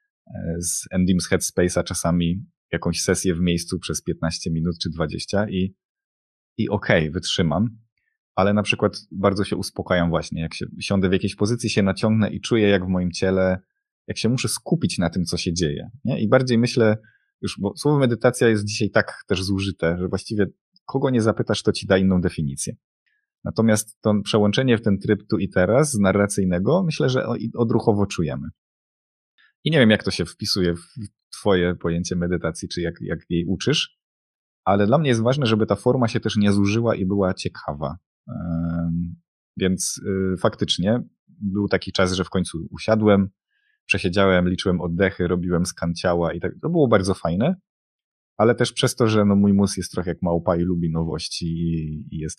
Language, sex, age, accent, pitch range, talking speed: Polish, male, 30-49, native, 90-110 Hz, 175 wpm